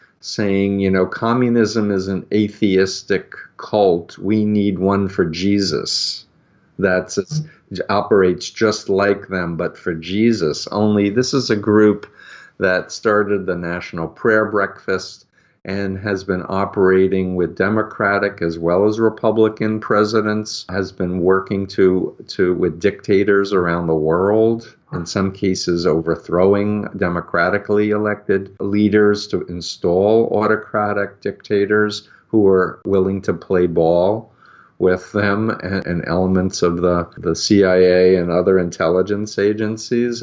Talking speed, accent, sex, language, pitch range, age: 125 wpm, American, male, English, 95-110 Hz, 50-69